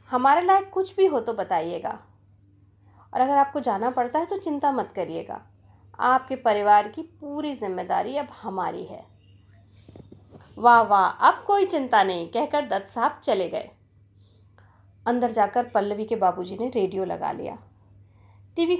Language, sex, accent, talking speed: Hindi, female, native, 145 wpm